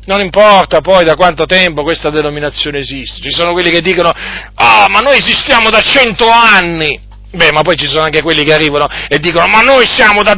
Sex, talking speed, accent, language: male, 215 wpm, native, Italian